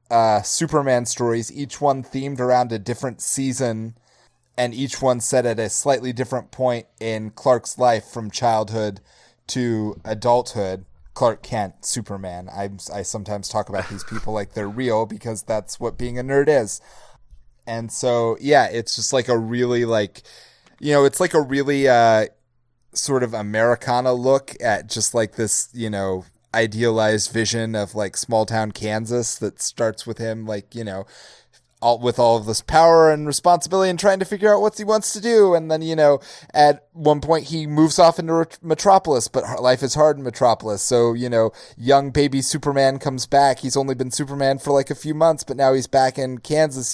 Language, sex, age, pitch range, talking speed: English, male, 30-49, 115-140 Hz, 185 wpm